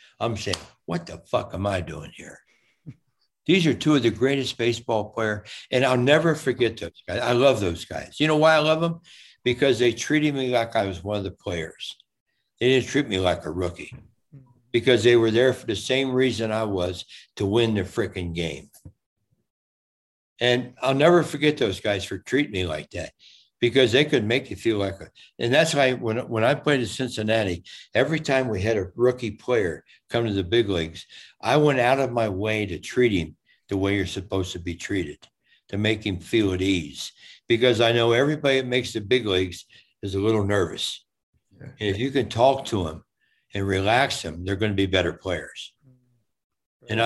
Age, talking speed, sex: 60-79, 200 wpm, male